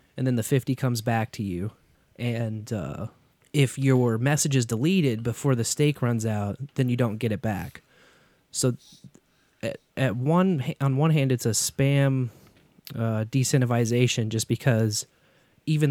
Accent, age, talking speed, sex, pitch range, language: American, 20-39, 155 wpm, male, 115-135 Hz, English